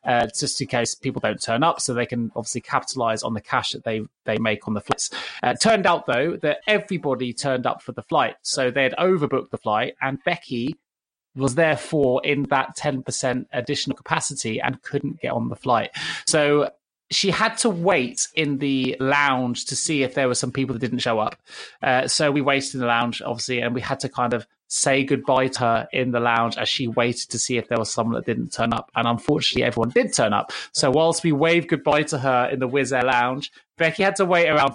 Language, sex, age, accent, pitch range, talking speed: English, male, 20-39, British, 125-155 Hz, 230 wpm